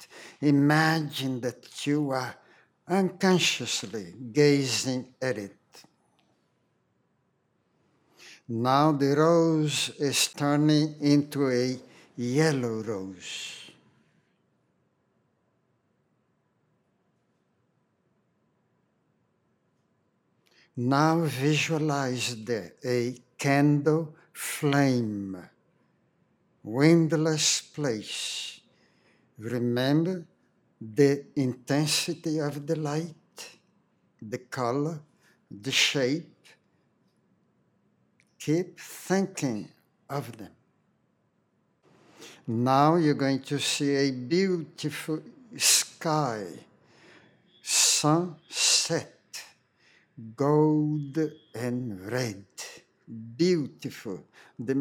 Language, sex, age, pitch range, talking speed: English, male, 60-79, 125-155 Hz, 60 wpm